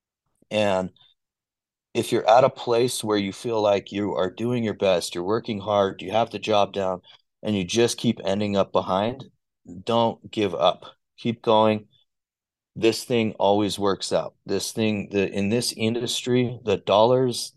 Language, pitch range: English, 100-120 Hz